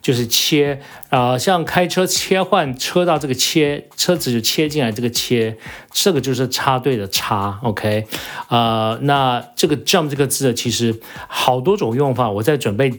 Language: Chinese